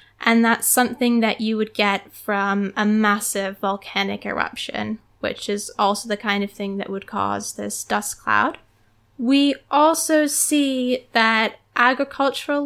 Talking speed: 140 wpm